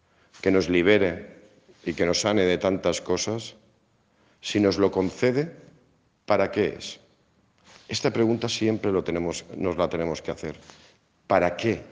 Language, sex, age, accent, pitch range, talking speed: Spanish, male, 50-69, Spanish, 85-110 Hz, 135 wpm